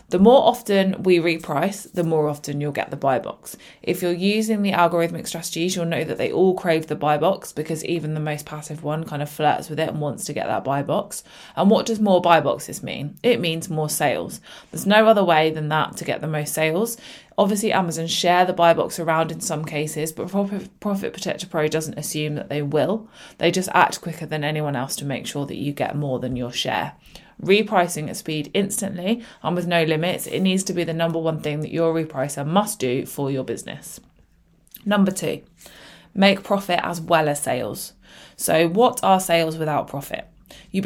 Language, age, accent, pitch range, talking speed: English, 20-39, British, 150-185 Hz, 210 wpm